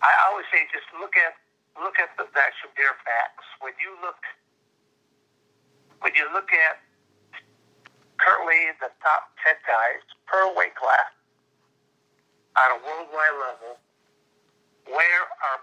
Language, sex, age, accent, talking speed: English, male, 60-79, American, 125 wpm